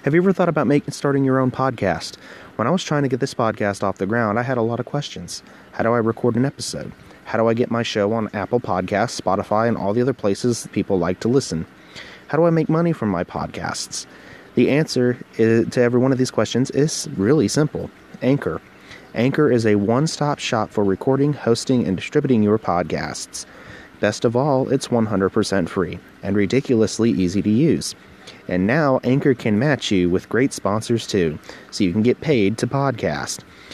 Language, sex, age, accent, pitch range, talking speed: English, male, 30-49, American, 100-130 Hz, 200 wpm